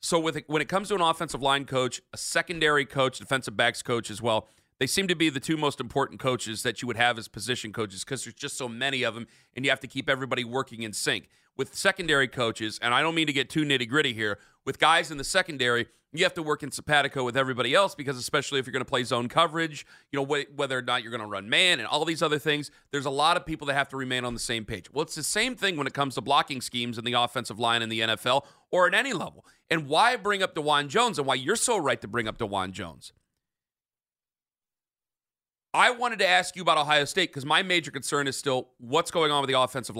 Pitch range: 125-160 Hz